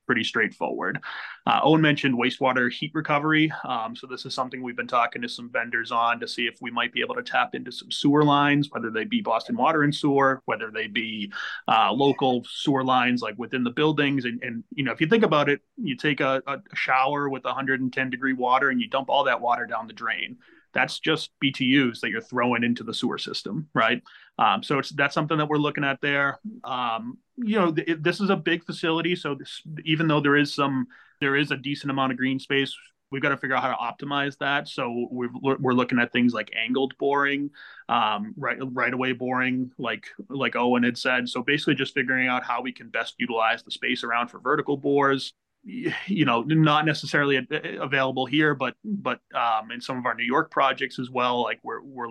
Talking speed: 220 wpm